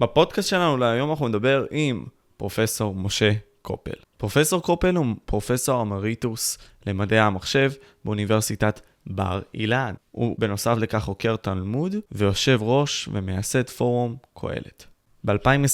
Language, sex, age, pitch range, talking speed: Hebrew, male, 20-39, 105-130 Hz, 115 wpm